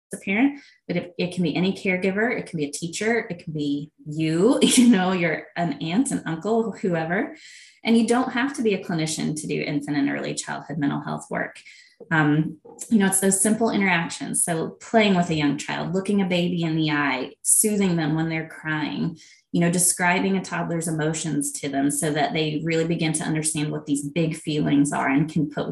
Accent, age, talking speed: American, 20-39, 210 wpm